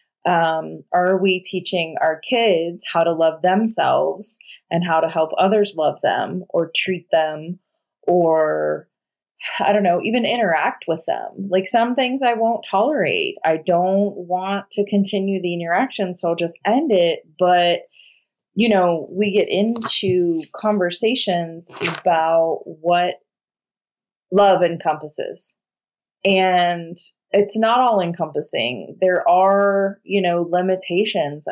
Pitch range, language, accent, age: 165-200 Hz, English, American, 20-39